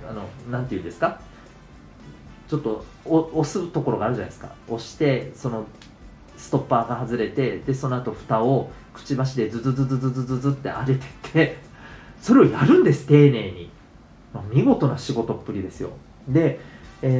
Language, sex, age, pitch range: Japanese, male, 40-59, 110-160 Hz